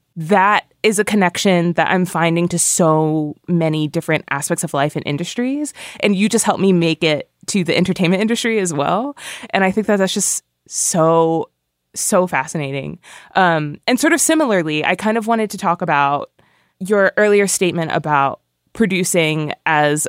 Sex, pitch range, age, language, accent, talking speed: female, 155-200 Hz, 20-39, English, American, 165 wpm